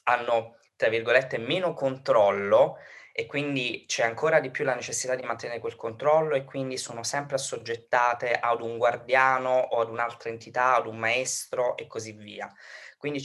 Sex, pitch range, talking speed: male, 110-145 Hz, 165 wpm